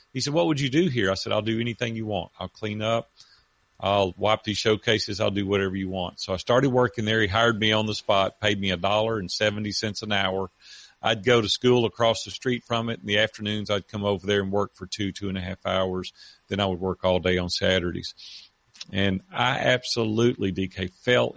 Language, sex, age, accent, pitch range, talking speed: English, male, 40-59, American, 95-115 Hz, 235 wpm